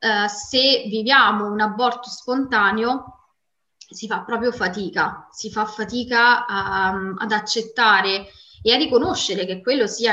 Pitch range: 205-245 Hz